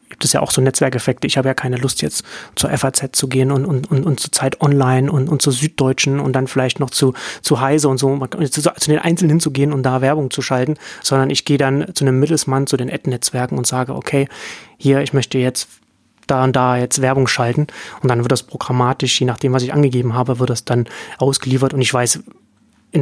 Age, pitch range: 30-49, 125-145 Hz